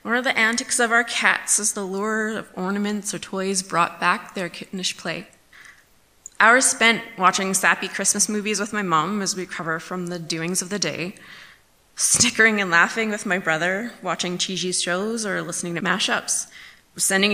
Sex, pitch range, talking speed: female, 175-205 Hz, 175 wpm